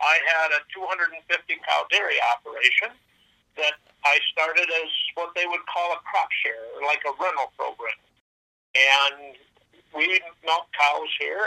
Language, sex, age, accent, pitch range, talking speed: English, male, 50-69, American, 155-185 Hz, 135 wpm